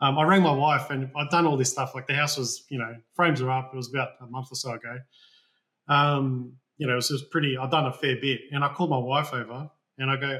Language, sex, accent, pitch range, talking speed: English, male, Australian, 130-160 Hz, 275 wpm